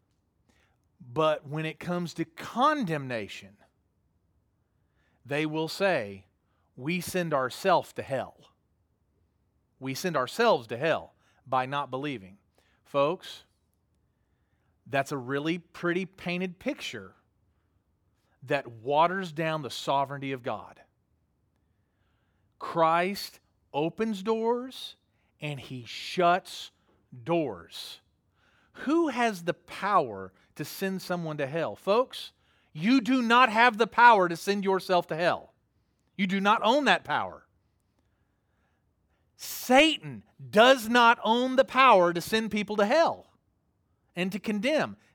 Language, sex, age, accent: English, male, 40-59, American